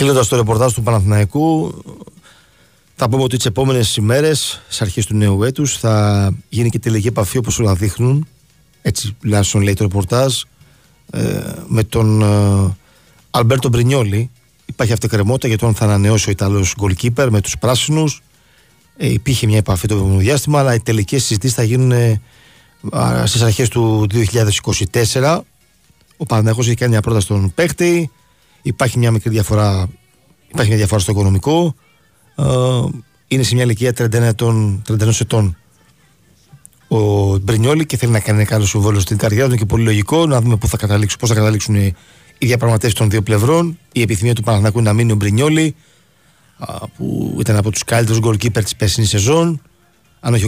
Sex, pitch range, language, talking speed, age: male, 105-130 Hz, Greek, 155 wpm, 40-59